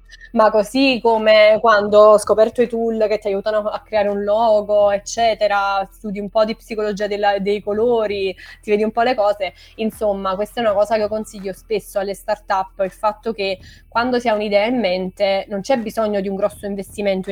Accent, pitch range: native, 190-220 Hz